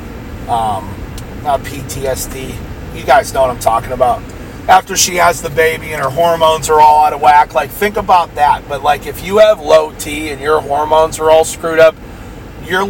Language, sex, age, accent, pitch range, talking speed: English, male, 40-59, American, 100-165 Hz, 195 wpm